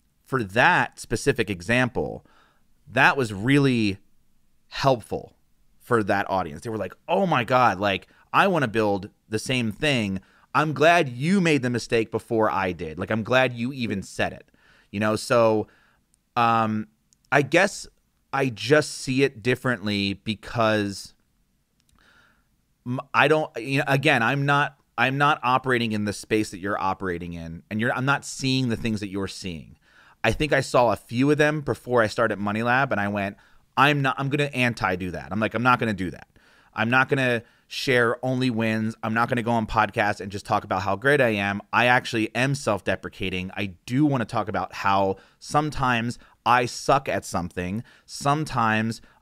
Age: 30-49